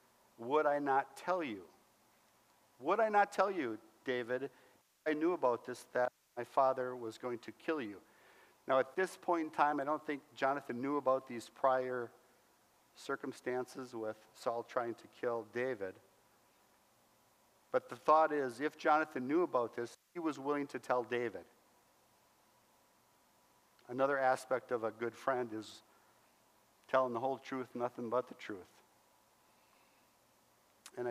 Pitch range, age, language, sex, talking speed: 115-135 Hz, 50-69, English, male, 145 wpm